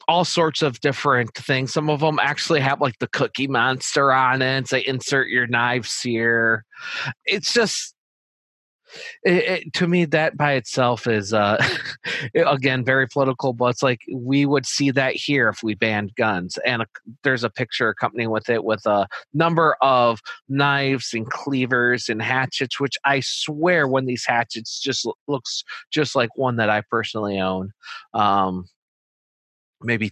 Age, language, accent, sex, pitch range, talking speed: 30-49, English, American, male, 115-140 Hz, 155 wpm